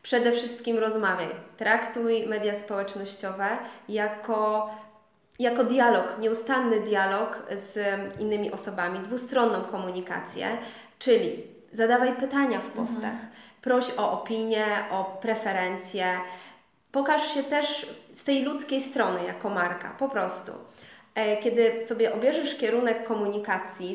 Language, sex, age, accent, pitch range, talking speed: Polish, female, 20-39, native, 200-235 Hz, 105 wpm